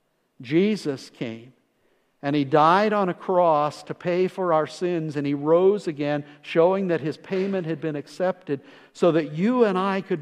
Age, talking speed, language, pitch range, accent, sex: 50-69, 175 wpm, English, 120-170 Hz, American, male